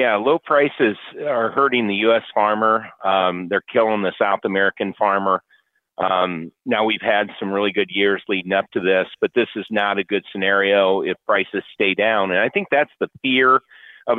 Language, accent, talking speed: English, American, 190 wpm